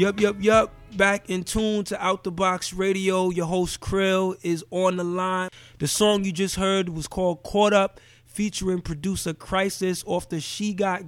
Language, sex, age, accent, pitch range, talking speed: English, male, 20-39, American, 145-190 Hz, 185 wpm